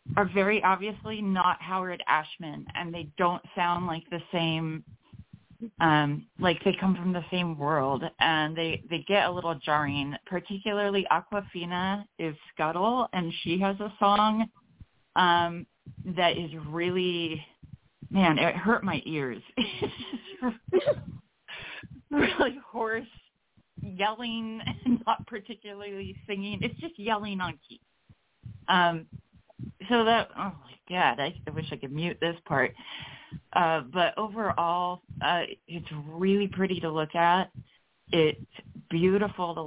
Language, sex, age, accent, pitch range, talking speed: English, female, 30-49, American, 160-200 Hz, 130 wpm